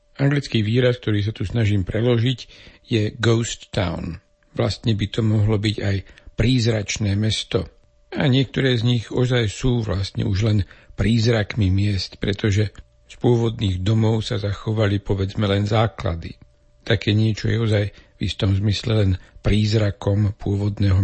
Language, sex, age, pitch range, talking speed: Slovak, male, 60-79, 100-120 Hz, 135 wpm